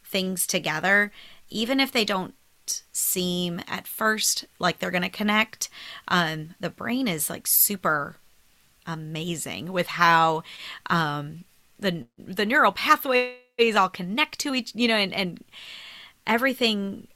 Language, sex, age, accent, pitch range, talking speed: English, female, 30-49, American, 175-225 Hz, 130 wpm